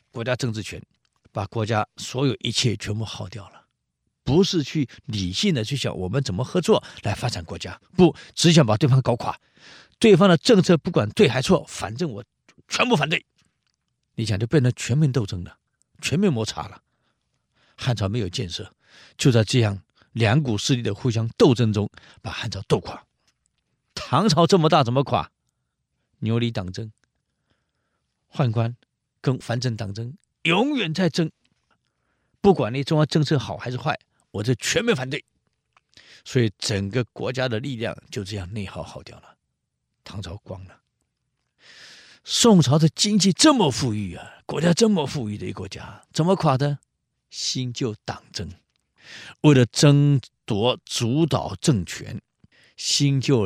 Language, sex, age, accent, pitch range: Chinese, male, 50-69, native, 105-150 Hz